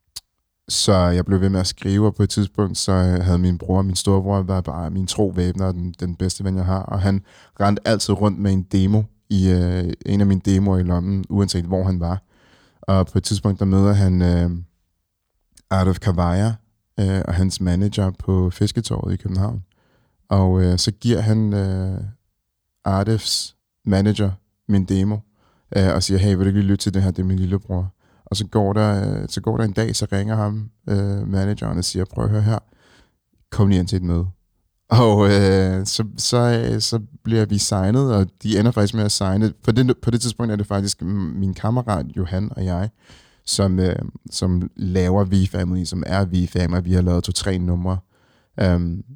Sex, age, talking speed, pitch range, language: male, 20-39, 195 wpm, 90-105 Hz, Danish